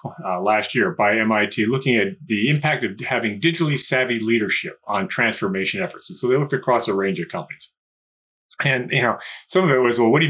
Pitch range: 105-145 Hz